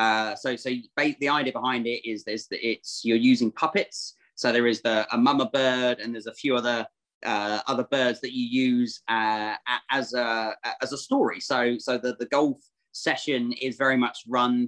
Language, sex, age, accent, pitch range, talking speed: English, male, 30-49, British, 115-140 Hz, 200 wpm